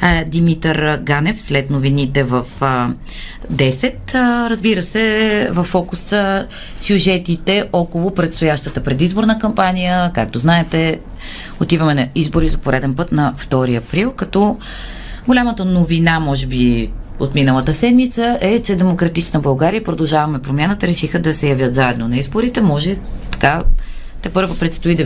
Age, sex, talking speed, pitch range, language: 30-49, female, 125 wpm, 145-195 Hz, Bulgarian